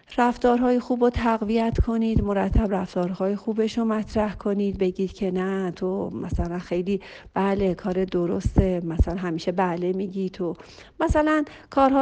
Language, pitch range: Persian, 180-235 Hz